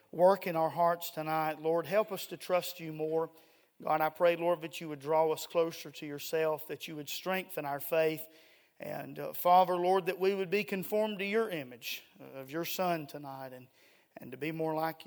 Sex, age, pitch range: male, 40-59, 155-180 Hz